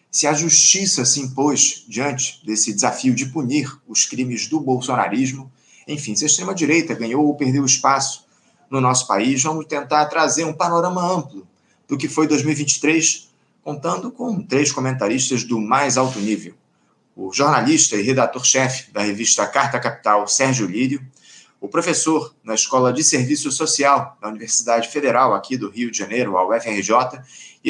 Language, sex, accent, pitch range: Portuguese, male, Brazilian, 115-150 Hz